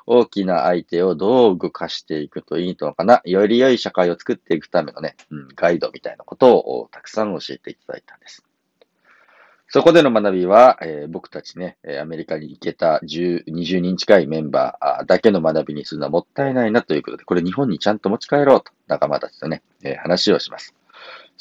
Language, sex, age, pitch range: Japanese, male, 40-59, 90-130 Hz